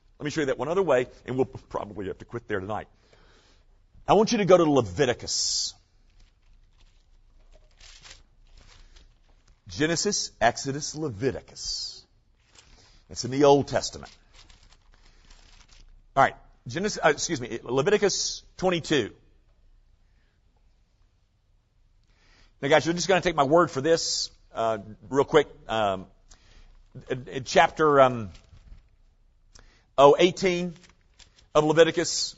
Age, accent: 50-69, American